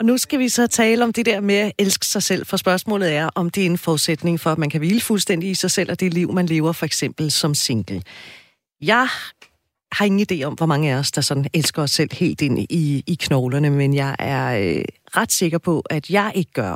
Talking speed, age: 245 wpm, 40-59